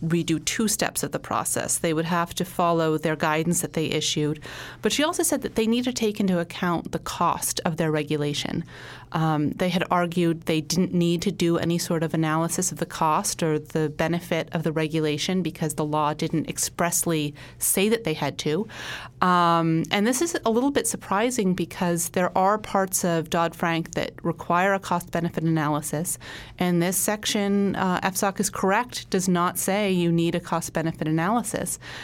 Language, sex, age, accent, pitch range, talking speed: English, female, 30-49, American, 160-185 Hz, 185 wpm